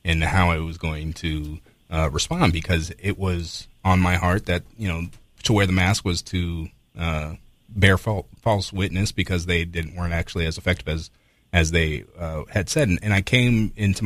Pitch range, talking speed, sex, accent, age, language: 85-100 Hz, 195 wpm, male, American, 30-49, English